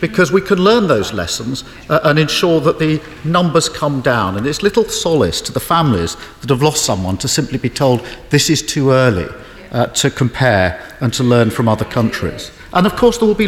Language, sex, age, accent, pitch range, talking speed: English, male, 50-69, British, 125-190 Hz, 215 wpm